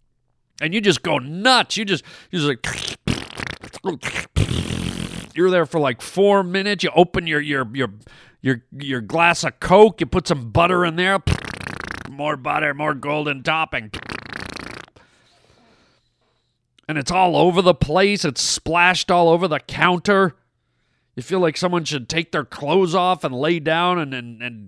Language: English